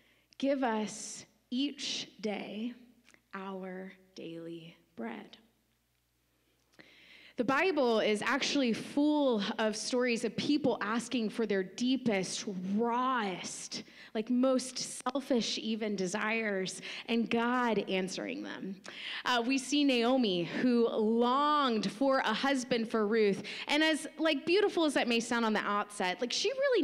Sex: female